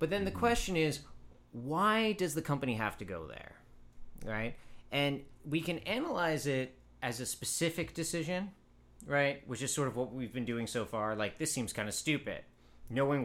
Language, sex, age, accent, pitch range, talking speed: English, male, 30-49, American, 100-140 Hz, 185 wpm